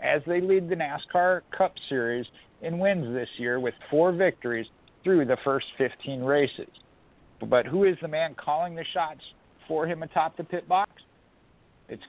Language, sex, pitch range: English, male, 130-170 Hz